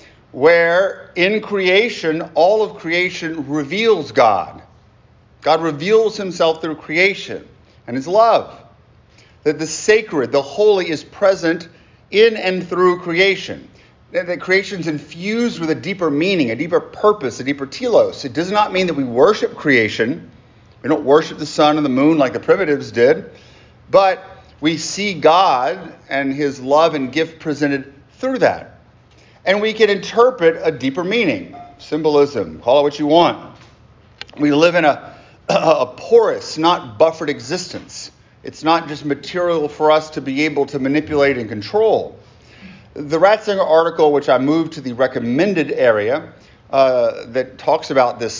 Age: 40-59